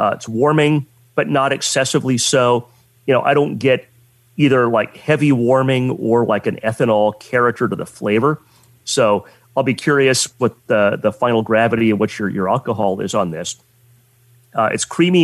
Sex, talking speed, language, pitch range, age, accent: male, 175 wpm, English, 115-135 Hz, 30-49, American